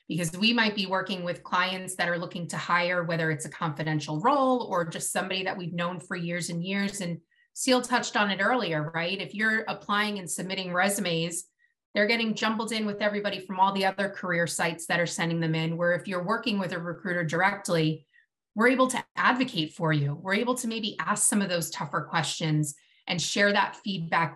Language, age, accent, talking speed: English, 30-49, American, 210 wpm